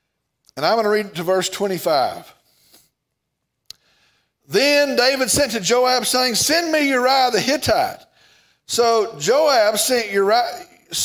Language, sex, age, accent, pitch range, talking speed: English, male, 50-69, American, 215-290 Hz, 130 wpm